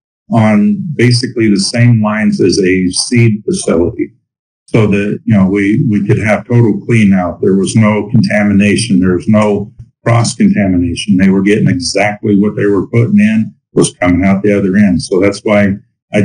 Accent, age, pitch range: American, 50-69, 100-115 Hz